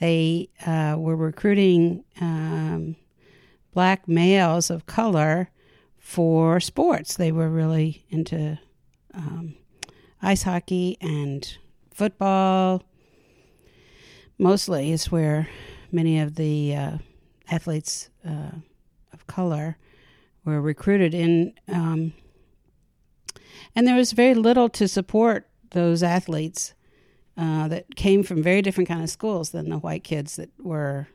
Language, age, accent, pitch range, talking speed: English, 60-79, American, 160-185 Hz, 115 wpm